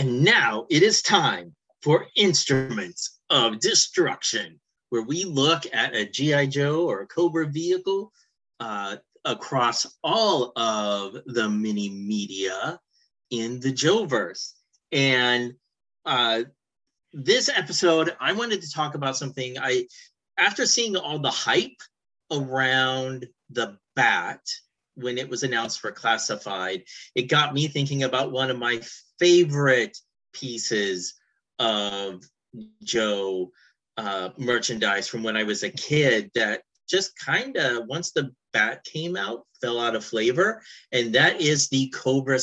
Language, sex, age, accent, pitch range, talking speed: English, male, 30-49, American, 115-165 Hz, 130 wpm